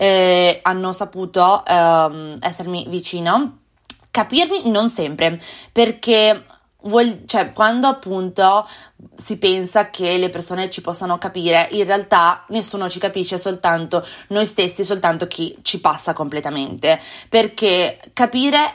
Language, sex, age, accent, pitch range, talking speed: Italian, female, 20-39, native, 175-220 Hz, 110 wpm